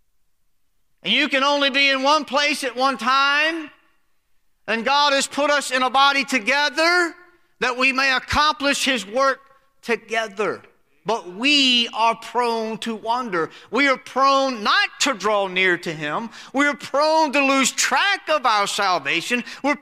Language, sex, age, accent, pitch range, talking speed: English, male, 40-59, American, 195-275 Hz, 155 wpm